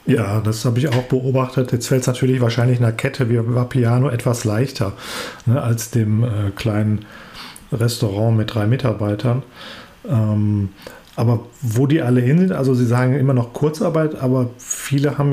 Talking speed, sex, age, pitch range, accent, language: 160 wpm, male, 40-59, 115-135 Hz, German, German